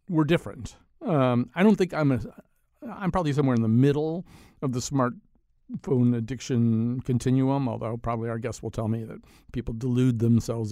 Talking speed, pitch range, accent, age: 170 wpm, 120-155 Hz, American, 50-69